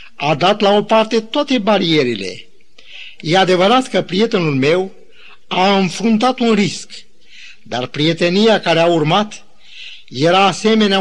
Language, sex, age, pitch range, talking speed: Romanian, male, 50-69, 160-220 Hz, 125 wpm